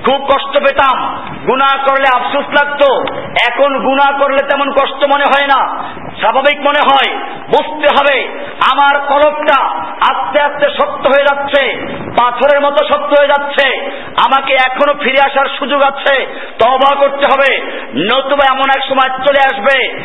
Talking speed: 140 wpm